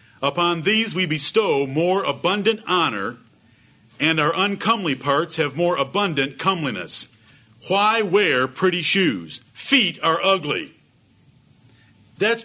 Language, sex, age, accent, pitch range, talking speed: English, male, 50-69, American, 145-220 Hz, 110 wpm